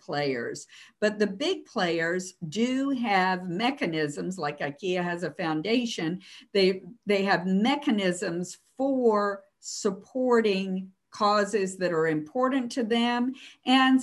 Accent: American